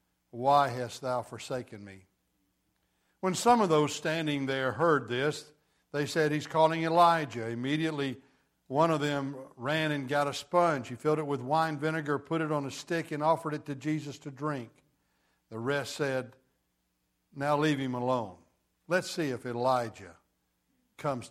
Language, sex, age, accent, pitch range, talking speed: English, male, 60-79, American, 125-160 Hz, 160 wpm